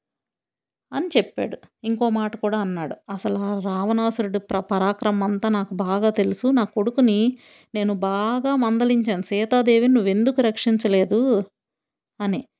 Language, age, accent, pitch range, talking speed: Telugu, 30-49, native, 205-245 Hz, 115 wpm